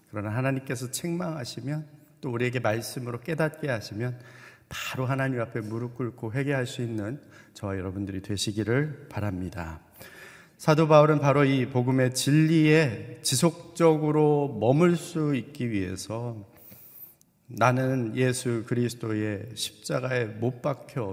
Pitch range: 115-145 Hz